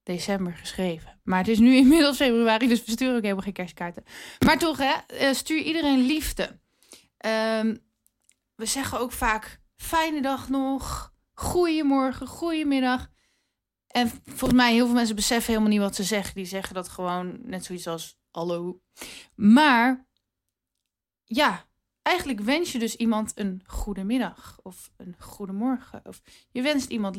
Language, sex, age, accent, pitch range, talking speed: Dutch, female, 20-39, Dutch, 190-250 Hz, 150 wpm